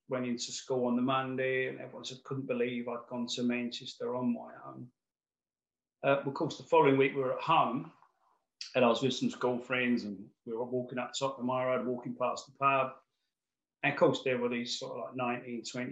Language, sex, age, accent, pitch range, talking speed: English, male, 40-59, British, 125-140 Hz, 220 wpm